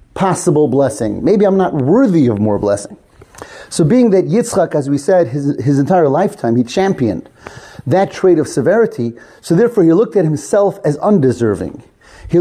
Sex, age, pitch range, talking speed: male, 30-49, 140-185 Hz, 170 wpm